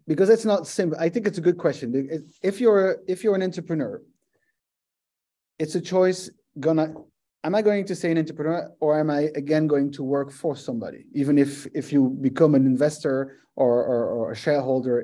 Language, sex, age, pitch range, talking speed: English, male, 30-49, 125-175 Hz, 195 wpm